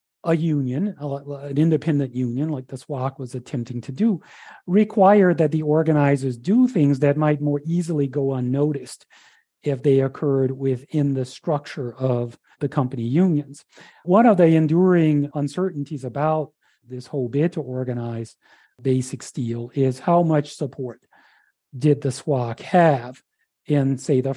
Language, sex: English, male